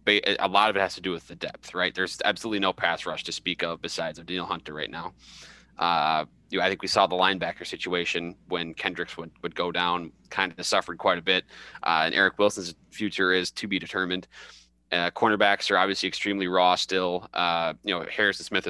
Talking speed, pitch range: 210 wpm, 85-100 Hz